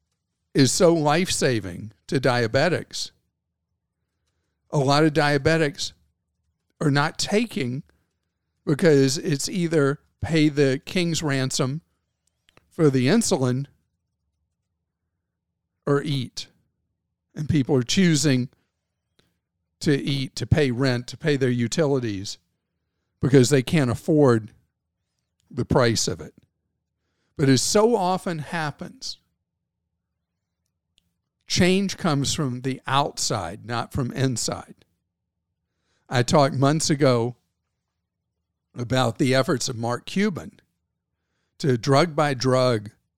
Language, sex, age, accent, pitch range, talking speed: English, male, 50-69, American, 90-145 Hz, 95 wpm